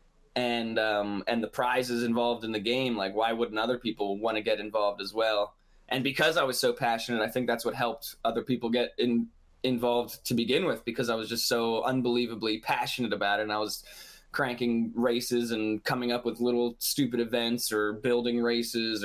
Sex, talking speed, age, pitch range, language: male, 200 wpm, 20-39, 115-145 Hz, English